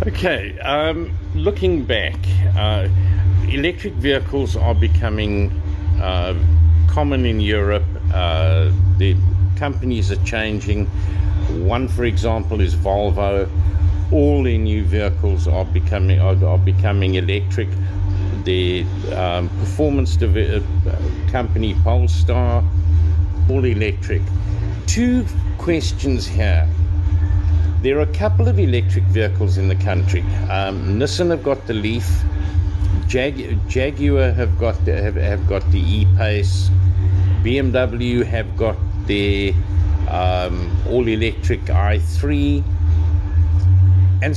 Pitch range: 85-95 Hz